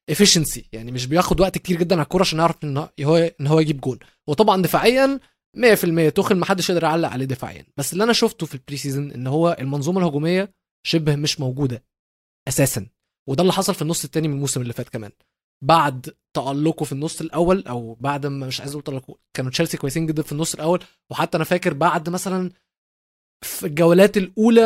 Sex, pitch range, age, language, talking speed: male, 140-180 Hz, 20-39, Arabic, 195 wpm